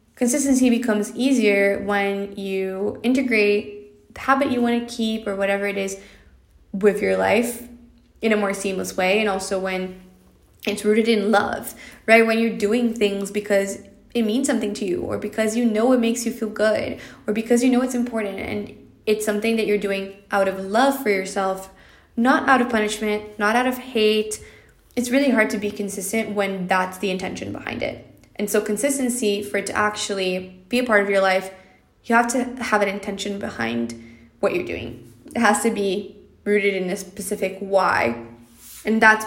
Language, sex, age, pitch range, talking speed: English, female, 20-39, 195-225 Hz, 185 wpm